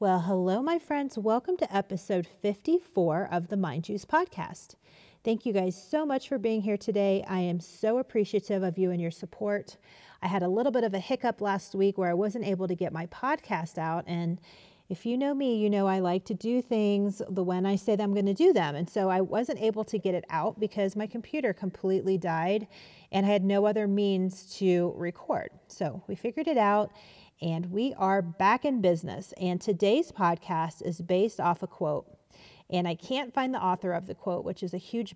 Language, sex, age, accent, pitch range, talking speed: English, female, 30-49, American, 180-220 Hz, 215 wpm